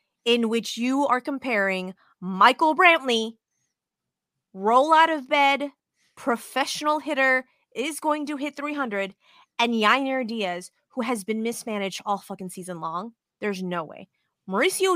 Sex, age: female, 20-39